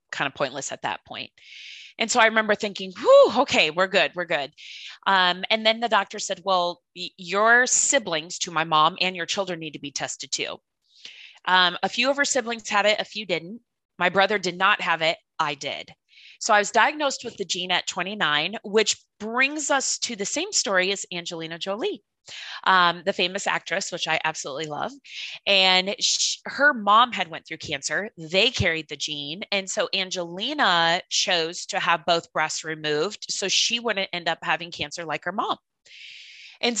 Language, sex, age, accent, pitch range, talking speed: English, female, 20-39, American, 170-225 Hz, 190 wpm